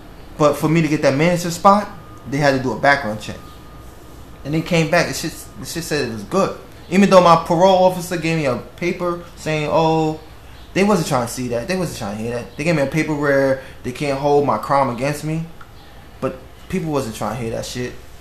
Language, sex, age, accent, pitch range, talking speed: English, male, 20-39, American, 120-150 Hz, 235 wpm